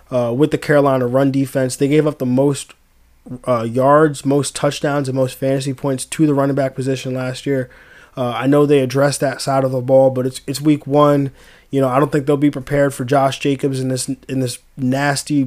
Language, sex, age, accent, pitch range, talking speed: English, male, 20-39, American, 130-145 Hz, 220 wpm